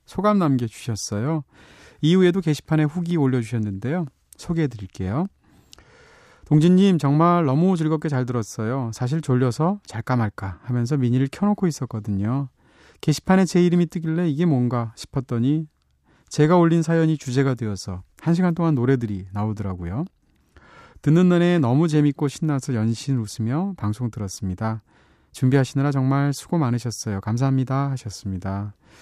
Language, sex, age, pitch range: Korean, male, 30-49, 110-160 Hz